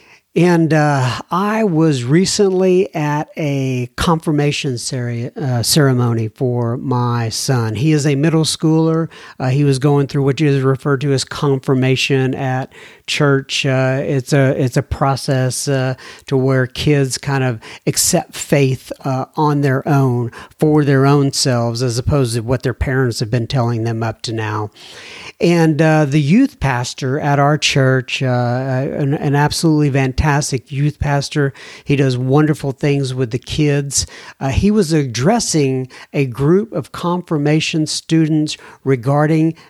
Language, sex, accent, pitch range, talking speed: English, male, American, 130-155 Hz, 145 wpm